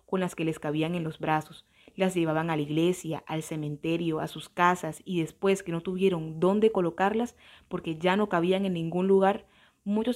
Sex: female